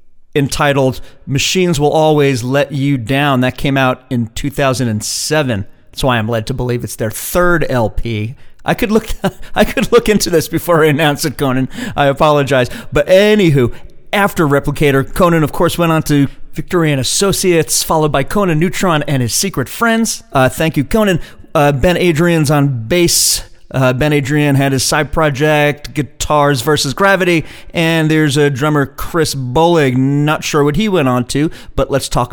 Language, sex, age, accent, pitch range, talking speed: English, male, 40-59, American, 130-170 Hz, 175 wpm